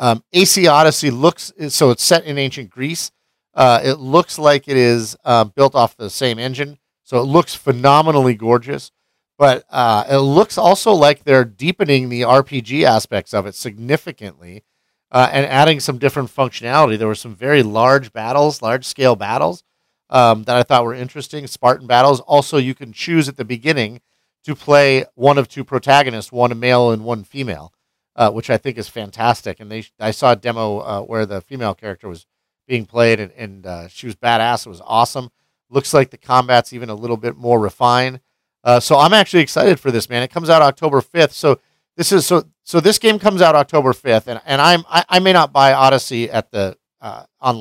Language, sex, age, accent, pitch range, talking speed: English, male, 40-59, American, 115-145 Hz, 200 wpm